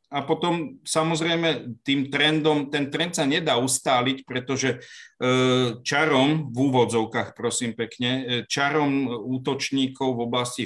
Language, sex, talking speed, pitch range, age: Slovak, male, 115 wpm, 115-135 Hz, 50-69